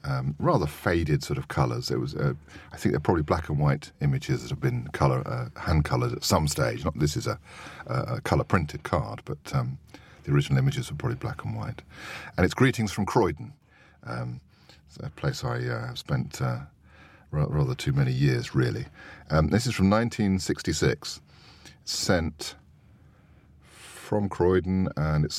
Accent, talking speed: British, 180 wpm